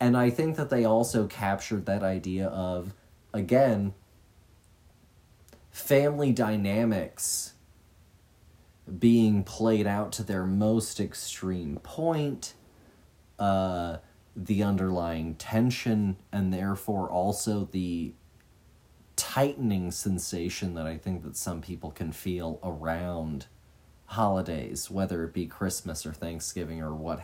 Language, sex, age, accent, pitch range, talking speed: English, male, 30-49, American, 90-115 Hz, 110 wpm